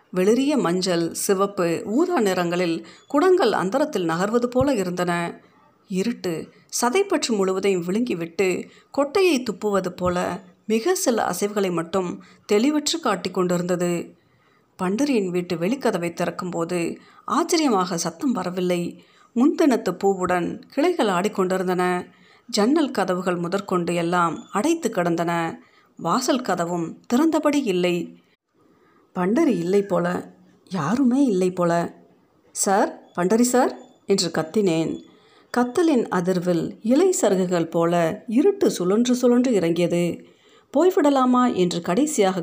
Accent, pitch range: native, 175-245 Hz